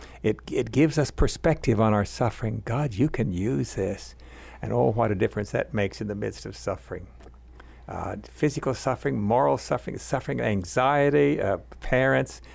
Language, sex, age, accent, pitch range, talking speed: English, male, 60-79, American, 100-125 Hz, 165 wpm